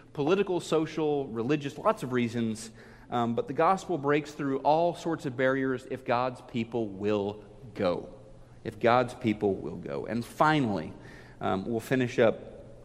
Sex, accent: male, American